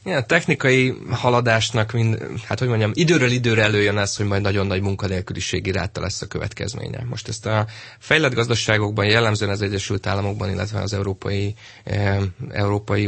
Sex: male